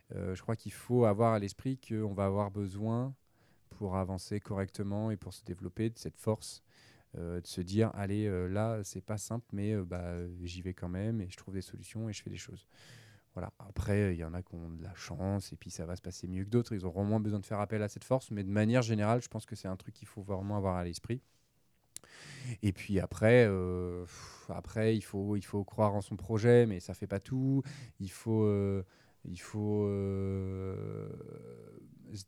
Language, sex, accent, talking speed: French, male, French, 235 wpm